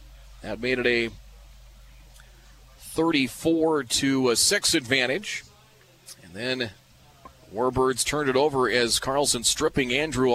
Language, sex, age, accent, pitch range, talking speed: English, male, 40-59, American, 115-140 Hz, 110 wpm